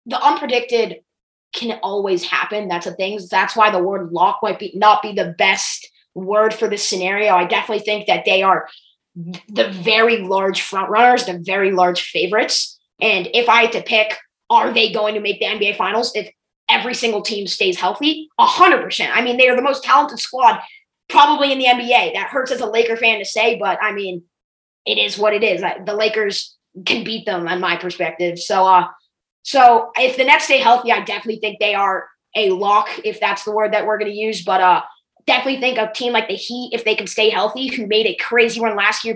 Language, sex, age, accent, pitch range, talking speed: English, female, 20-39, American, 195-235 Hz, 215 wpm